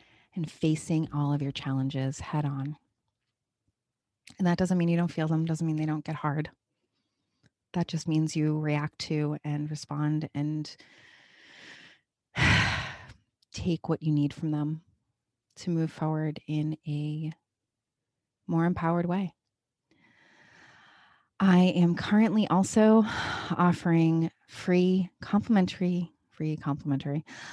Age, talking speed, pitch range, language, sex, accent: 30-49, 120 wpm, 145-170 Hz, English, female, American